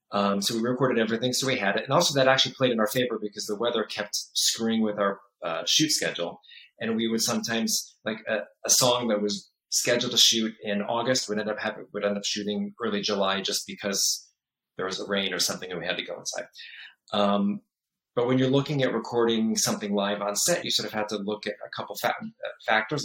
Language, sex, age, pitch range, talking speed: English, male, 30-49, 105-120 Hz, 225 wpm